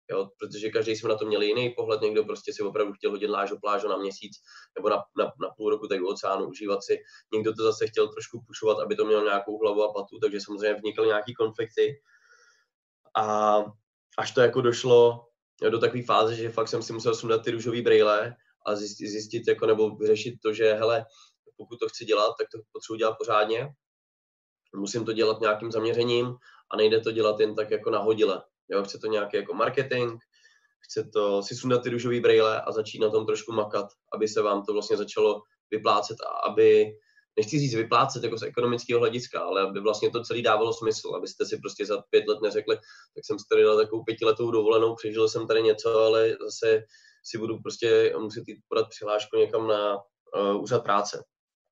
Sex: male